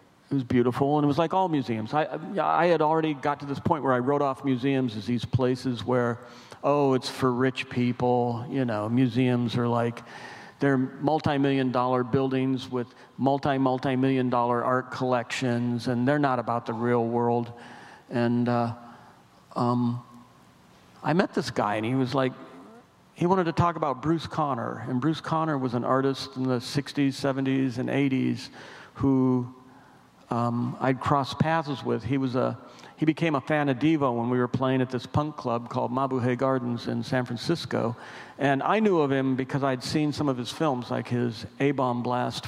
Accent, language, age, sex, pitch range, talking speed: American, English, 50-69, male, 120-140 Hz, 180 wpm